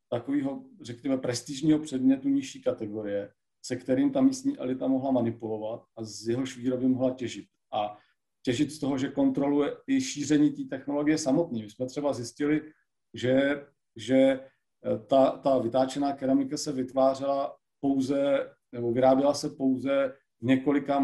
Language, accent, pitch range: Czech, native, 120-145 Hz